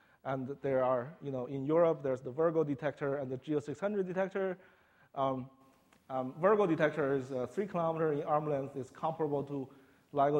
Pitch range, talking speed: 140-175 Hz, 185 wpm